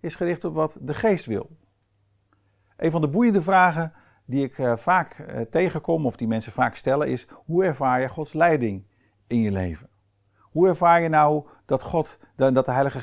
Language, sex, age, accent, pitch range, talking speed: Dutch, male, 50-69, Dutch, 110-155 Hz, 180 wpm